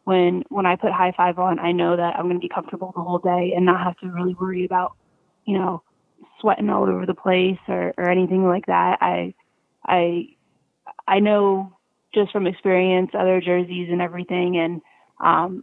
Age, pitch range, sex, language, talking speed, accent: 20-39, 175-185 Hz, female, English, 190 wpm, American